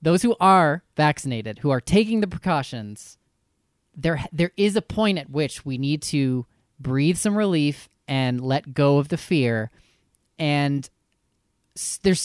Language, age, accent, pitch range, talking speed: English, 20-39, American, 130-165 Hz, 145 wpm